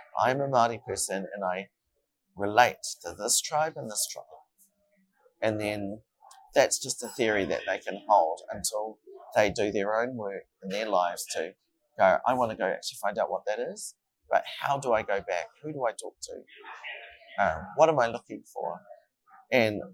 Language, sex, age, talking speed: English, male, 40-59, 185 wpm